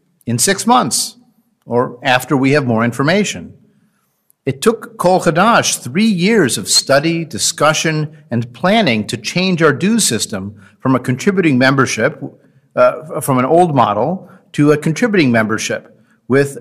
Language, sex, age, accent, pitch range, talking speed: English, male, 50-69, American, 125-200 Hz, 140 wpm